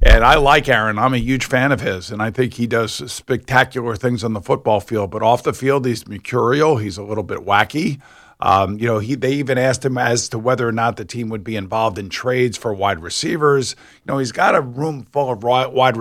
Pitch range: 115-145 Hz